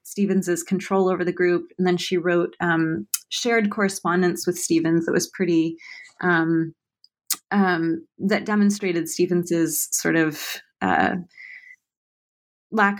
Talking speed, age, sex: 120 wpm, 20-39, female